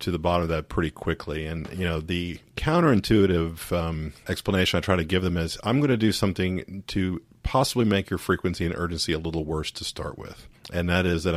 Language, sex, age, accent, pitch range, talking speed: English, male, 50-69, American, 80-105 Hz, 220 wpm